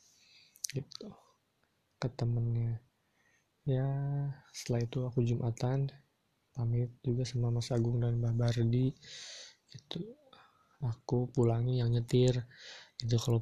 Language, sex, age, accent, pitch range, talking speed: Indonesian, male, 20-39, native, 115-130 Hz, 105 wpm